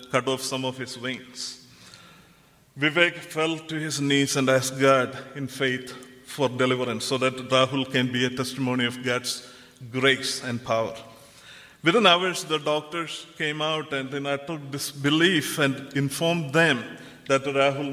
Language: English